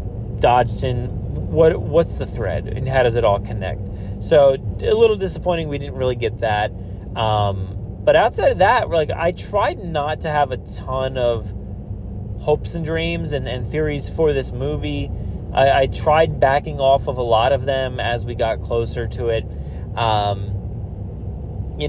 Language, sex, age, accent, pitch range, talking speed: English, male, 20-39, American, 100-140 Hz, 165 wpm